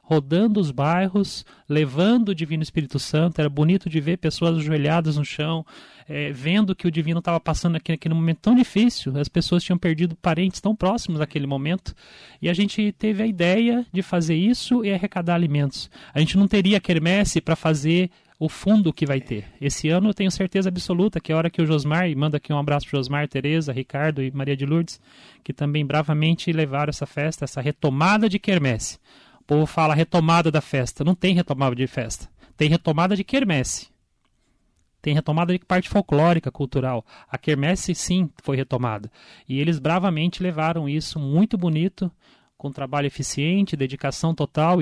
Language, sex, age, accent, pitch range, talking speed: Portuguese, male, 30-49, Brazilian, 145-180 Hz, 180 wpm